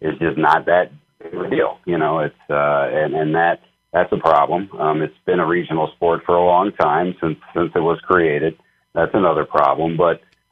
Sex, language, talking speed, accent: male, English, 205 wpm, American